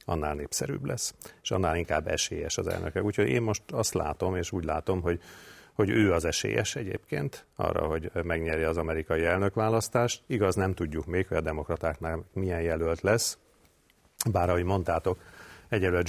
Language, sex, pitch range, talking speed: Hungarian, male, 80-95 Hz, 160 wpm